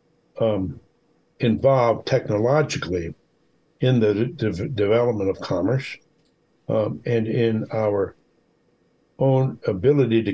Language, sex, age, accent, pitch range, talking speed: English, male, 60-79, American, 115-150 Hz, 100 wpm